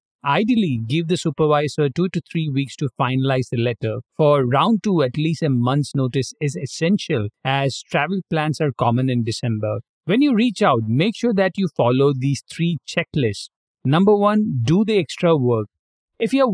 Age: 50-69